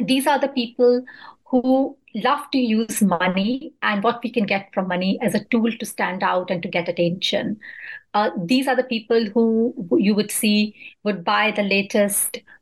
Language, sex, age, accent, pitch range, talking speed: English, female, 30-49, Indian, 195-245 Hz, 185 wpm